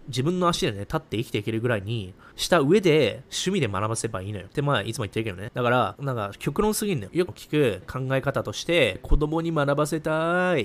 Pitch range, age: 110-160 Hz, 20-39